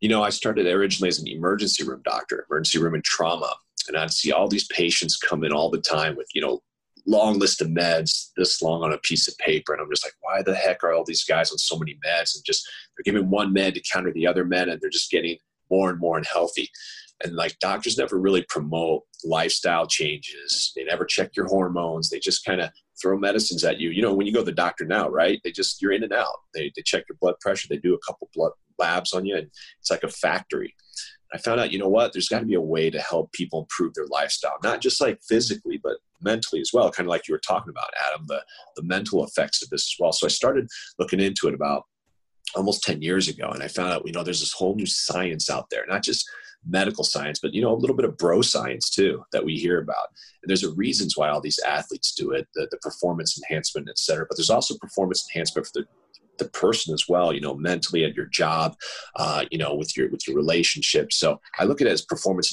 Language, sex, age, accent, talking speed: English, male, 30-49, American, 250 wpm